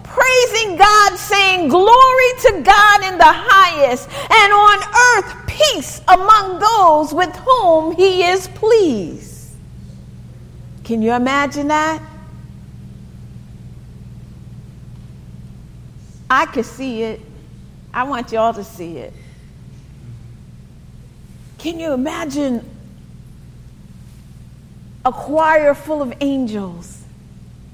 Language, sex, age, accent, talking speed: English, female, 40-59, American, 95 wpm